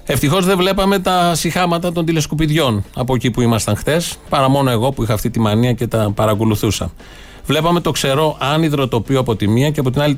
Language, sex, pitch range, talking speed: Greek, male, 125-165 Hz, 205 wpm